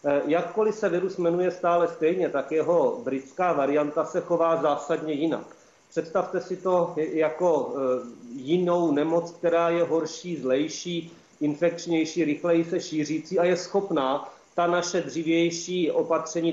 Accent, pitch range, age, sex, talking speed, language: native, 155-180 Hz, 40-59, male, 125 wpm, Czech